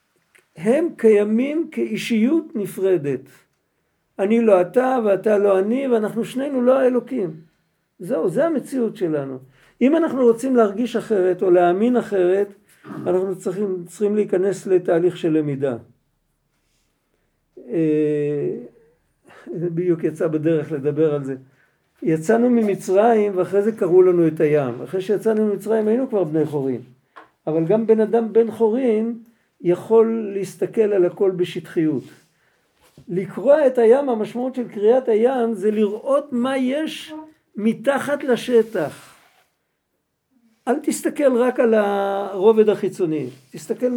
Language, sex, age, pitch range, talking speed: Hebrew, male, 50-69, 180-235 Hz, 120 wpm